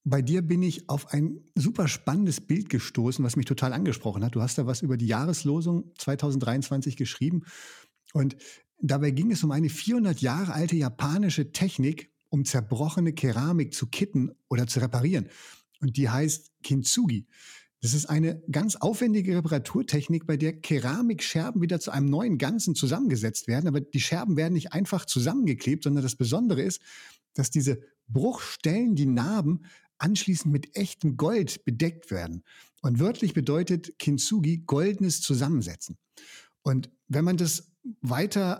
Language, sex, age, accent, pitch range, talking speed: German, male, 50-69, German, 140-175 Hz, 150 wpm